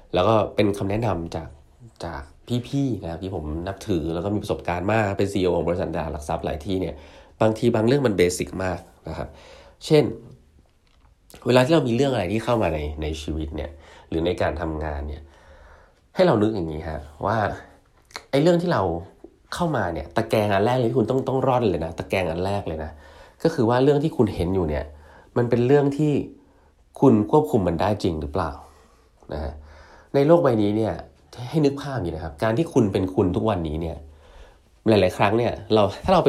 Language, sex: Thai, male